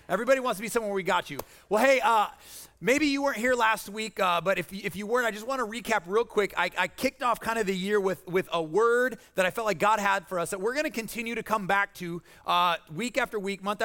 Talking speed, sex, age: 285 wpm, male, 30-49